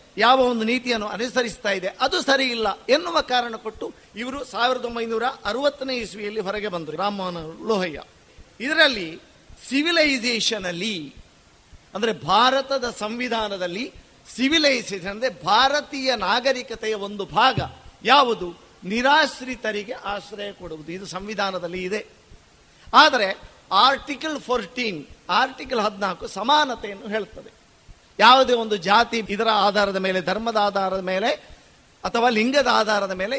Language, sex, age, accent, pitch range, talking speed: Kannada, male, 50-69, native, 200-255 Hz, 105 wpm